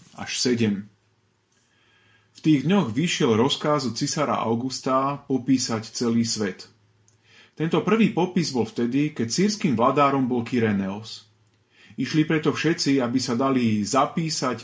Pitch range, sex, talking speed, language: 115-150 Hz, male, 125 wpm, Slovak